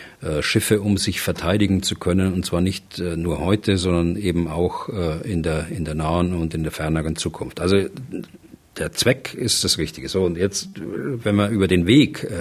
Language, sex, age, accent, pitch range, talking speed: German, male, 50-69, German, 85-110 Hz, 185 wpm